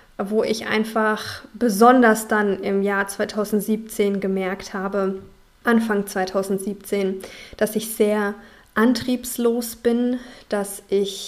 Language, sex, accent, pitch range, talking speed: German, female, German, 205-235 Hz, 100 wpm